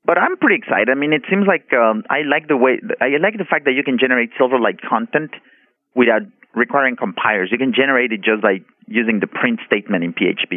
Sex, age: male, 30-49